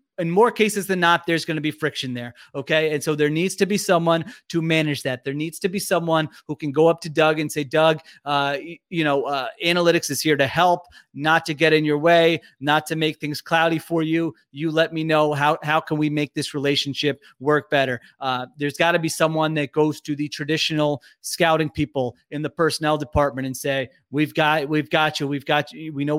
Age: 30-49